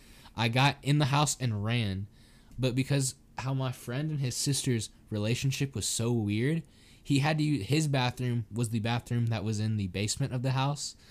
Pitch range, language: 110-140 Hz, English